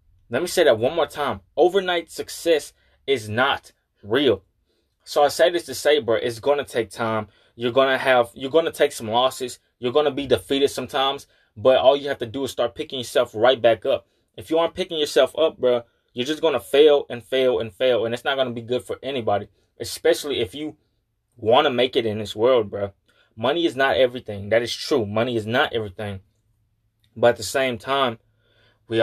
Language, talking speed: English, 220 wpm